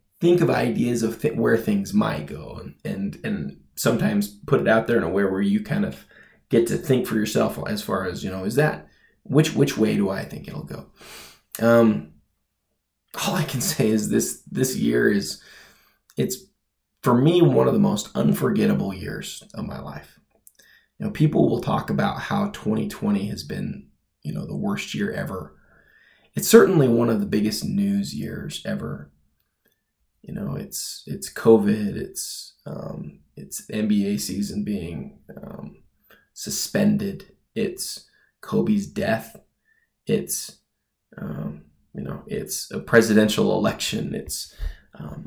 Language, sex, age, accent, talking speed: English, male, 20-39, American, 155 wpm